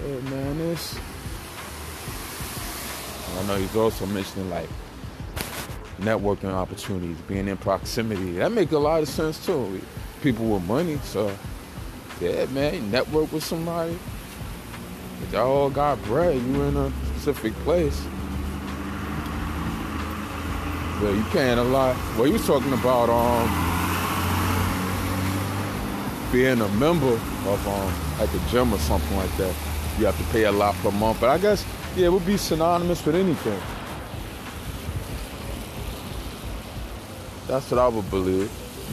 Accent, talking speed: American, 140 wpm